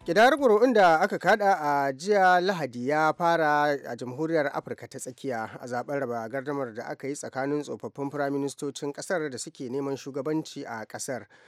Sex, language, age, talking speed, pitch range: male, English, 30-49, 160 wpm, 125-150 Hz